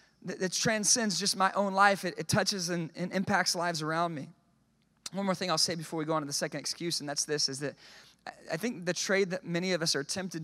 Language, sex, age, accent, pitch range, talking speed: English, male, 30-49, American, 160-200 Hz, 245 wpm